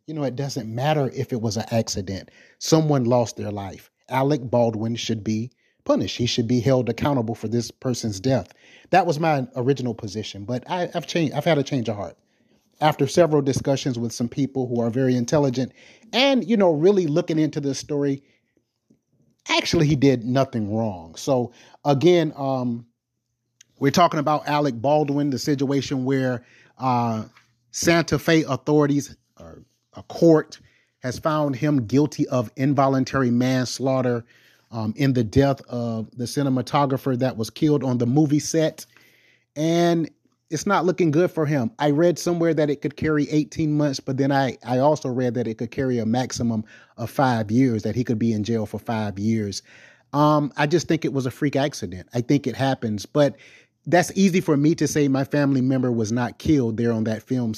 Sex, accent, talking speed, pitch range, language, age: male, American, 180 wpm, 120-150 Hz, English, 30-49